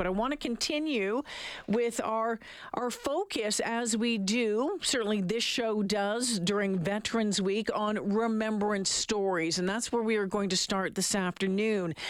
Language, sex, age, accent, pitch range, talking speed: English, female, 50-69, American, 185-225 Hz, 160 wpm